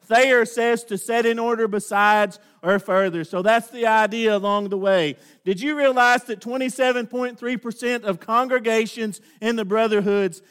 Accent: American